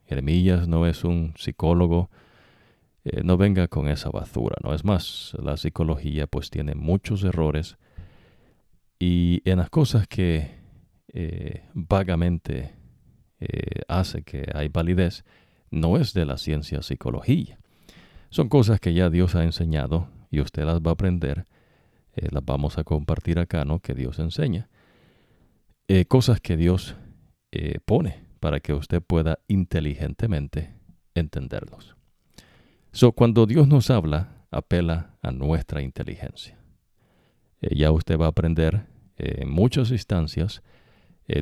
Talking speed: 135 wpm